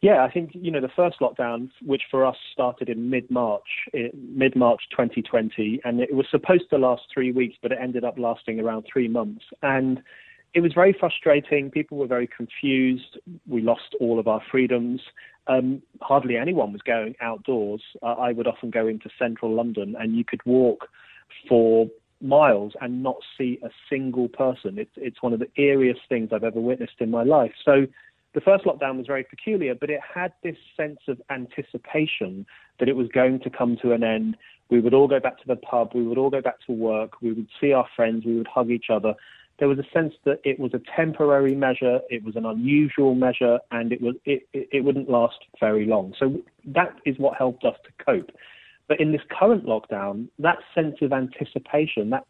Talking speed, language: 205 wpm, English